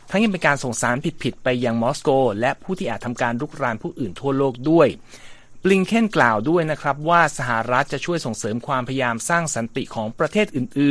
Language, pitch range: Thai, 115-155 Hz